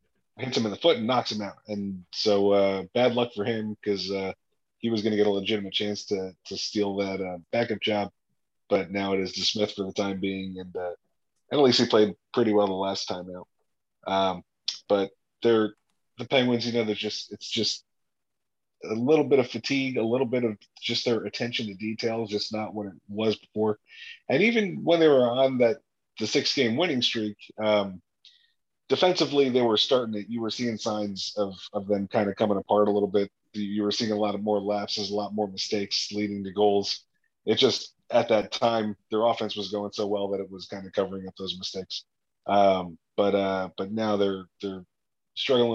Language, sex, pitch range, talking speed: English, male, 100-115 Hz, 210 wpm